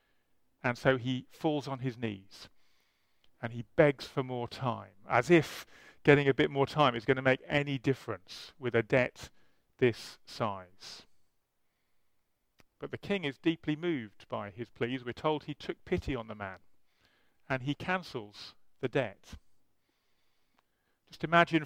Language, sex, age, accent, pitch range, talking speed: English, male, 40-59, British, 120-155 Hz, 150 wpm